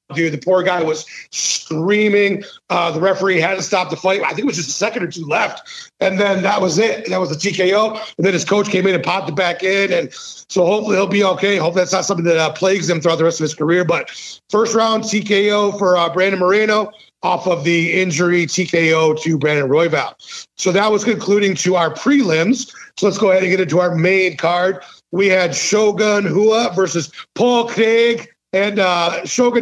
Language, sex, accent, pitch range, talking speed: English, male, American, 170-205 Hz, 215 wpm